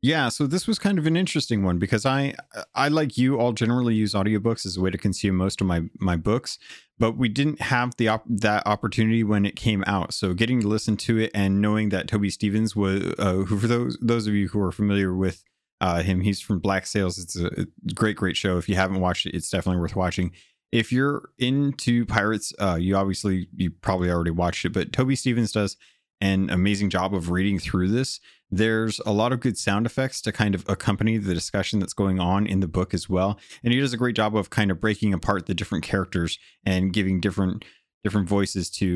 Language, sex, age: English, male, 30-49